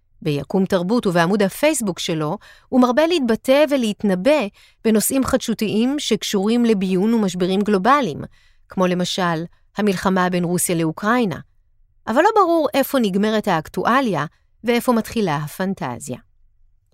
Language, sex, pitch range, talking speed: Hebrew, female, 170-250 Hz, 105 wpm